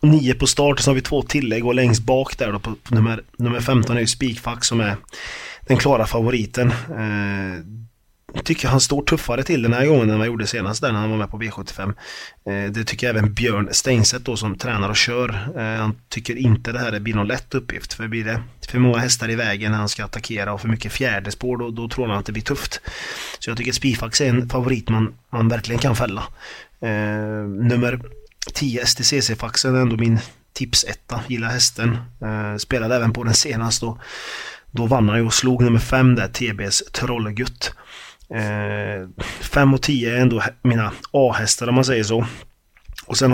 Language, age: Swedish, 30-49